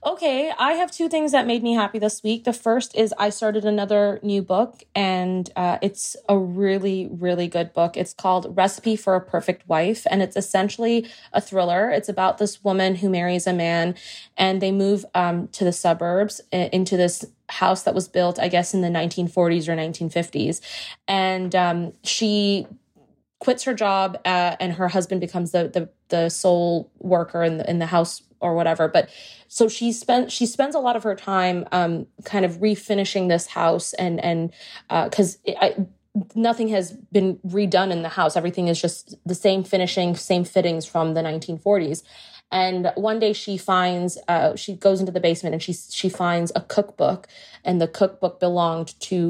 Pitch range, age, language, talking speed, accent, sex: 175-205 Hz, 20-39, English, 185 wpm, American, female